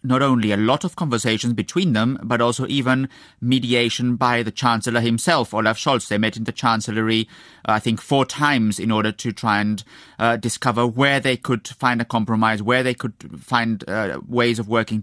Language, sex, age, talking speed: English, male, 30-49, 195 wpm